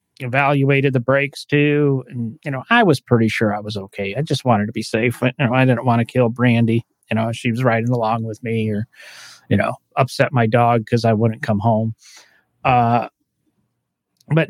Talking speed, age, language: 205 wpm, 40-59, English